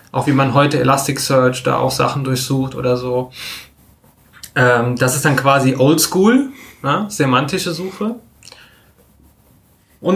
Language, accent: German, German